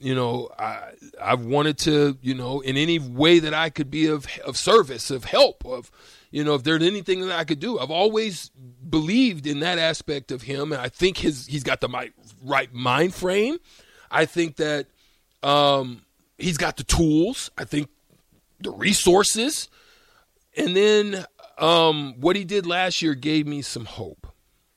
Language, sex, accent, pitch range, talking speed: English, male, American, 125-160 Hz, 175 wpm